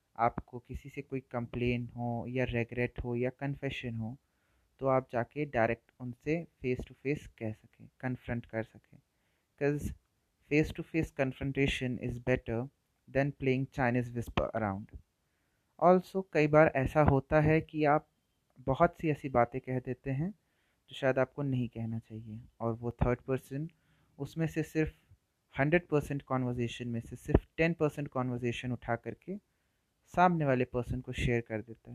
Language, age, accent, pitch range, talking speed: Hindi, 30-49, native, 120-140 Hz, 150 wpm